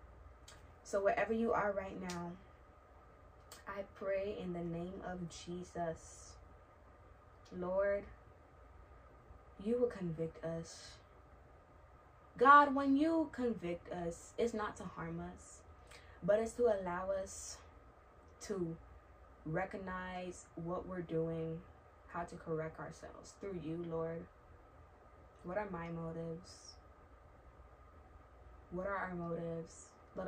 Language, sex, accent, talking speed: English, female, American, 105 wpm